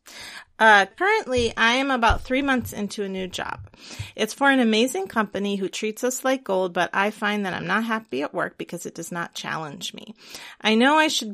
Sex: female